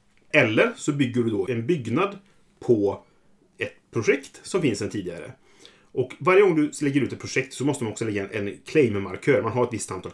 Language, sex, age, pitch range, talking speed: Swedish, male, 30-49, 110-145 Hz, 200 wpm